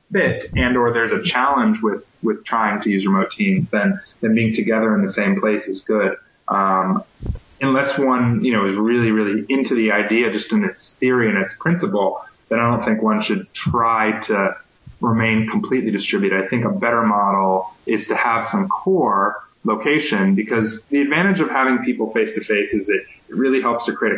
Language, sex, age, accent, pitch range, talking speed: English, male, 30-49, American, 110-135 Hz, 195 wpm